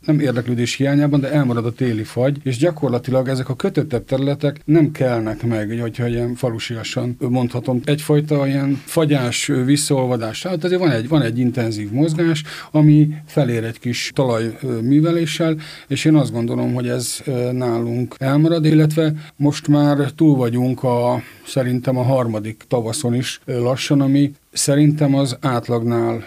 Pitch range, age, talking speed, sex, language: 120-145 Hz, 50-69, 140 wpm, male, Hungarian